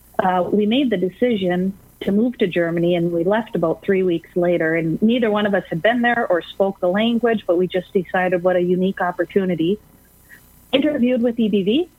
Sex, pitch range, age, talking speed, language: female, 180-215 Hz, 40-59, 195 wpm, English